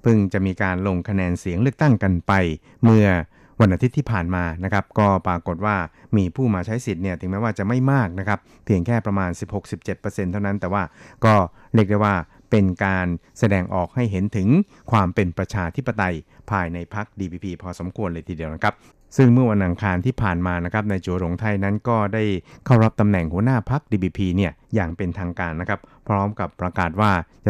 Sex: male